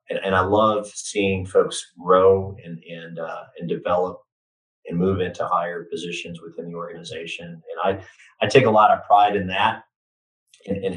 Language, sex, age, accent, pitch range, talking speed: English, male, 30-49, American, 85-110 Hz, 170 wpm